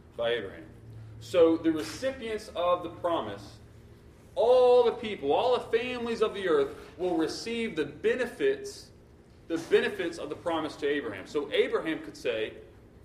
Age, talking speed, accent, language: 30-49, 145 wpm, American, French